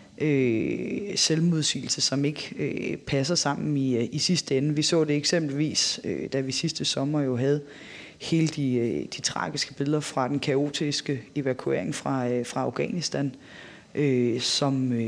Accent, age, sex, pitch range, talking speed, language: native, 30-49, female, 135-155 Hz, 125 wpm, Danish